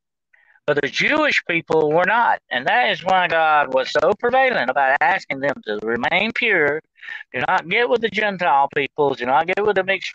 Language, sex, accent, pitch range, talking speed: English, male, American, 145-195 Hz, 195 wpm